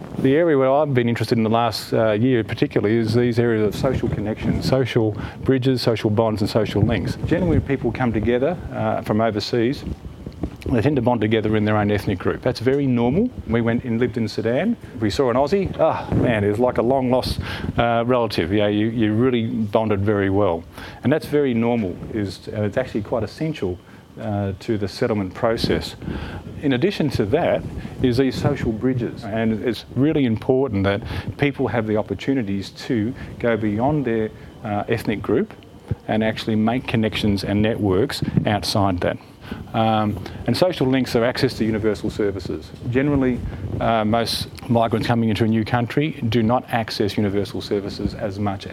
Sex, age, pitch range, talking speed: male, 40-59, 105-125 Hz, 175 wpm